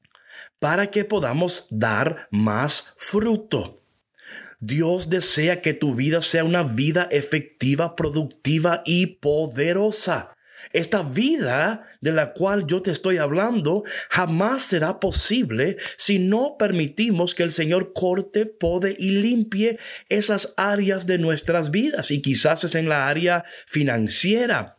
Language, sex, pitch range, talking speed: Spanish, male, 140-195 Hz, 125 wpm